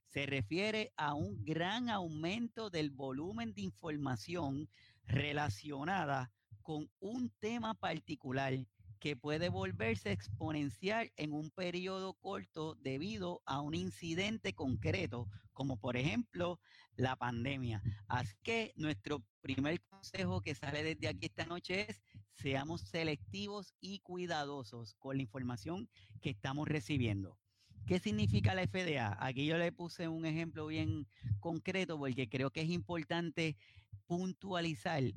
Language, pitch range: Spanish, 120-175 Hz